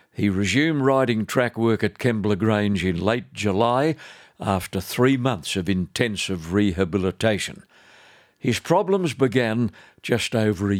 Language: English